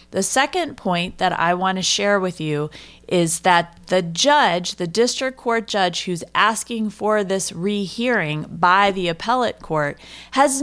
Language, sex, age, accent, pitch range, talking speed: English, female, 30-49, American, 180-240 Hz, 150 wpm